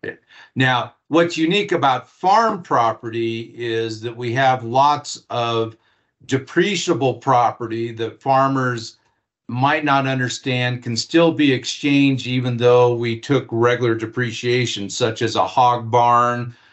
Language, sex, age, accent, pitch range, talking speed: English, male, 50-69, American, 115-135 Hz, 120 wpm